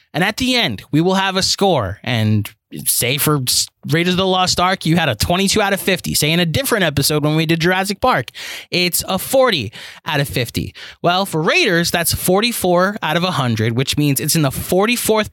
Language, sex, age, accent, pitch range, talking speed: English, male, 20-39, American, 140-195 Hz, 210 wpm